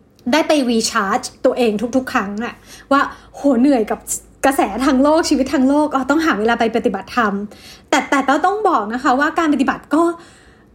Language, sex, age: Thai, female, 20-39